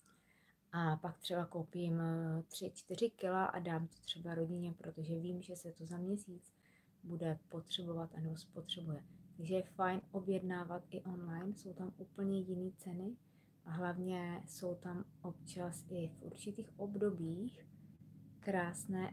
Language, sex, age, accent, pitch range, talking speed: Czech, female, 20-39, native, 170-195 Hz, 135 wpm